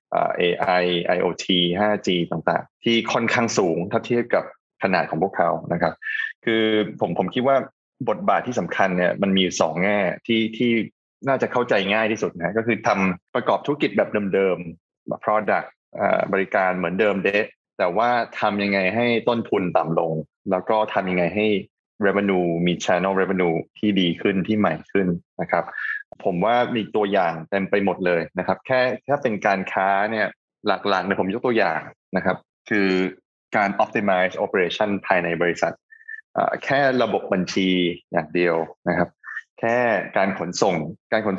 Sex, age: male, 20-39